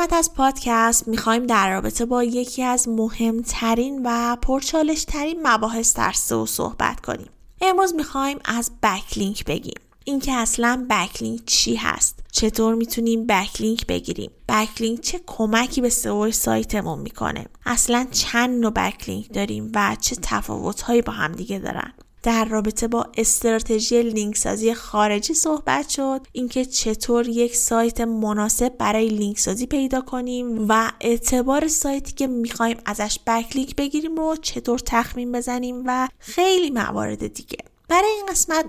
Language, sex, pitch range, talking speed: Persian, female, 215-260 Hz, 135 wpm